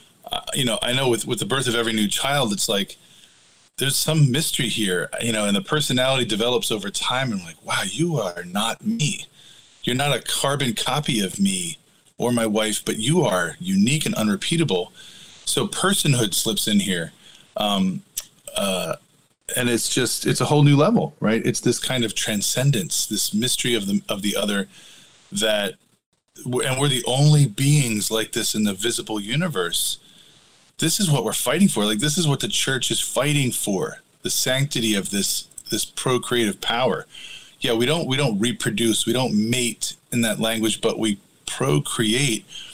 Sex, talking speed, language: male, 180 wpm, English